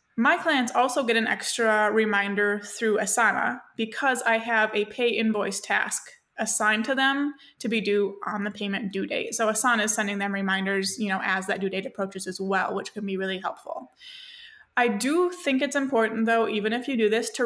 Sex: female